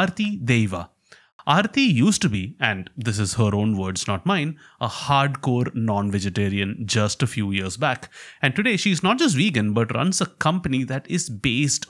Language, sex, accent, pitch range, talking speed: English, male, Indian, 115-165 Hz, 175 wpm